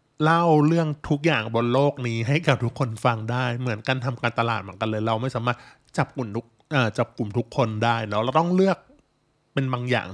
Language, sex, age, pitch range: Thai, male, 20-39, 115-145 Hz